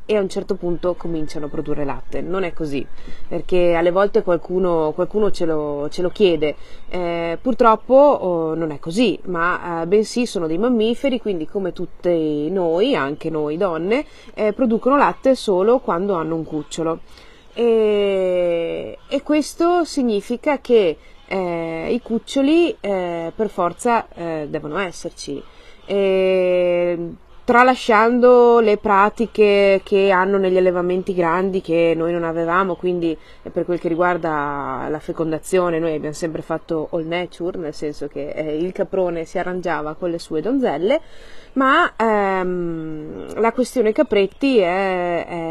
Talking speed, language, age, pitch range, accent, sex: 140 wpm, Italian, 30-49, 165-225 Hz, native, female